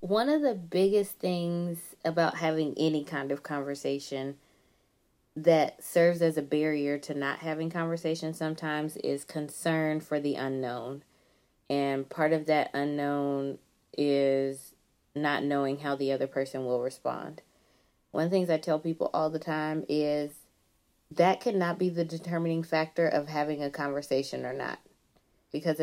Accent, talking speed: American, 150 wpm